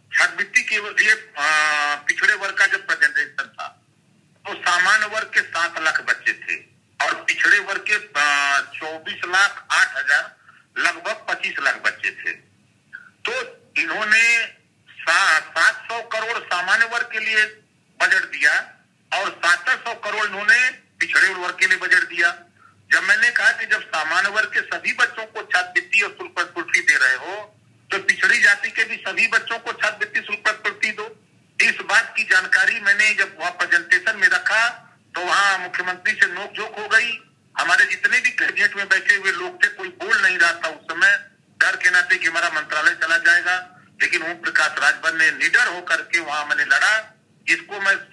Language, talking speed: English, 140 wpm